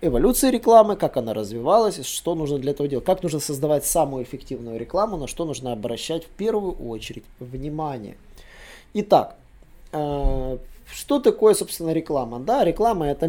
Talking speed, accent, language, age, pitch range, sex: 140 wpm, native, Russian, 20-39, 130-180 Hz, male